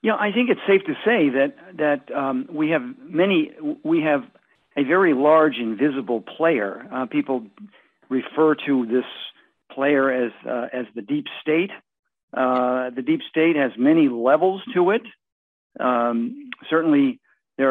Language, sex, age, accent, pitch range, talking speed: English, male, 50-69, American, 125-160 Hz, 150 wpm